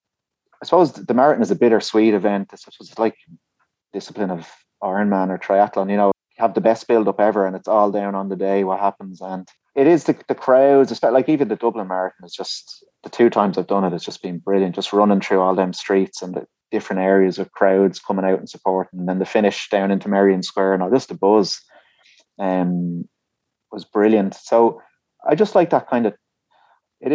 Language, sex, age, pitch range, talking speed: English, male, 30-49, 95-110 Hz, 215 wpm